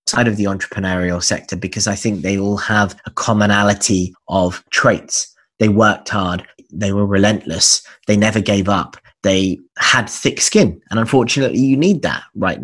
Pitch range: 95-115 Hz